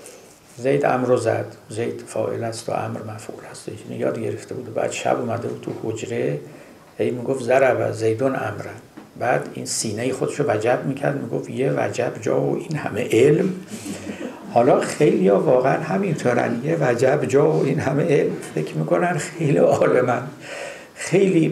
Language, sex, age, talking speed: Persian, male, 60-79, 155 wpm